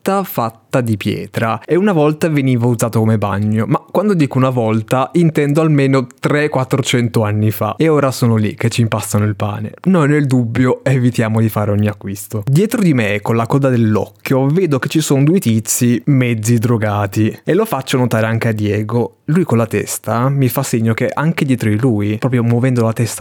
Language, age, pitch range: Italian, 20-39, 110-150 Hz